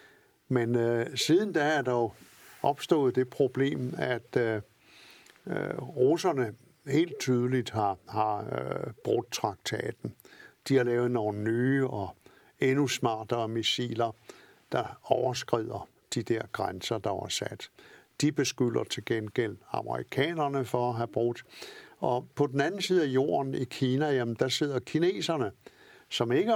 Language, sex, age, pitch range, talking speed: Danish, male, 60-79, 115-140 Hz, 140 wpm